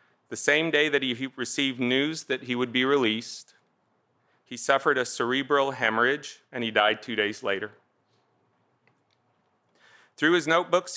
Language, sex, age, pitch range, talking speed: English, male, 40-59, 120-145 Hz, 140 wpm